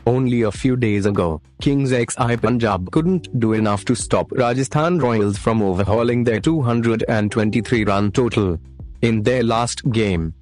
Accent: native